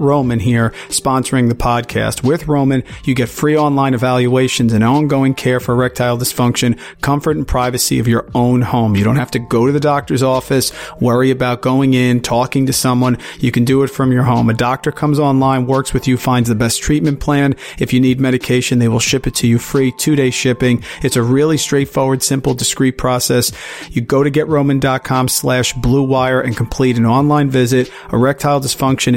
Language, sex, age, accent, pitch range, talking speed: English, male, 40-59, American, 125-140 Hz, 195 wpm